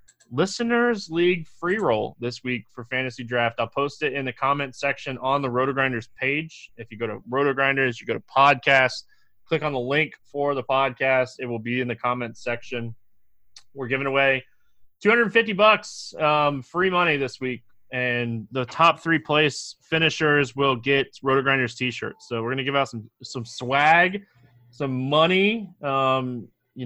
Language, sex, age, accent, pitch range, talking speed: English, male, 20-39, American, 120-145 Hz, 175 wpm